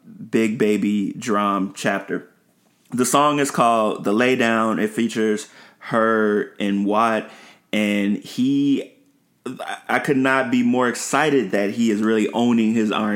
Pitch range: 100-115 Hz